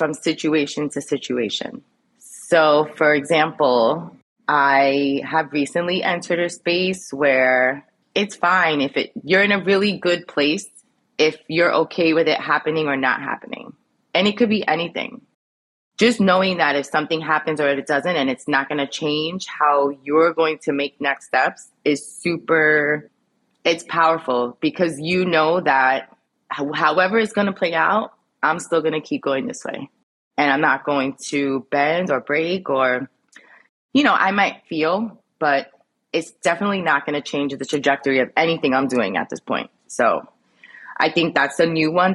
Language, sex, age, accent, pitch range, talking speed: English, female, 20-39, American, 140-165 Hz, 165 wpm